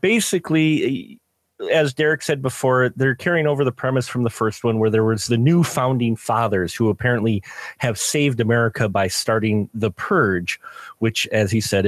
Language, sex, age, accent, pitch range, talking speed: English, male, 30-49, American, 110-140 Hz, 170 wpm